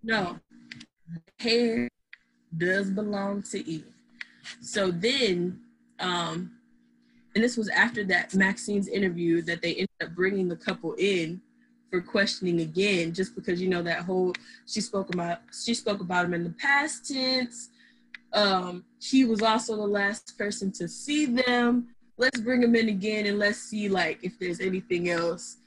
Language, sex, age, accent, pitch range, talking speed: English, female, 20-39, American, 175-230 Hz, 155 wpm